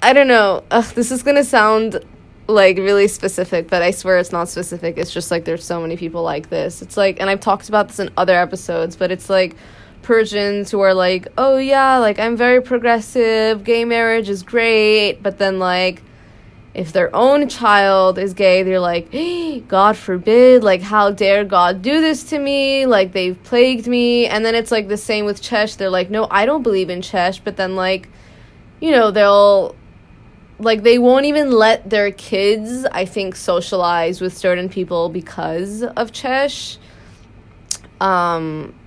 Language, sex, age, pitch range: English, female, 20-39, 175-220 Hz